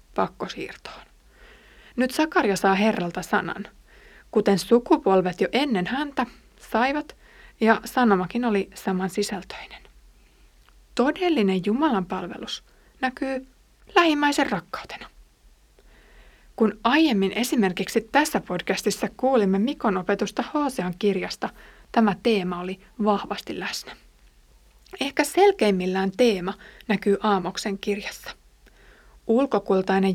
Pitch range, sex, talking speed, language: 190-255 Hz, female, 90 wpm, Finnish